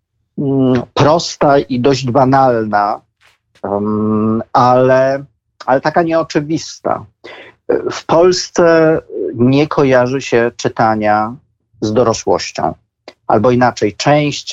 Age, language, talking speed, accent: 40-59, Polish, 80 wpm, native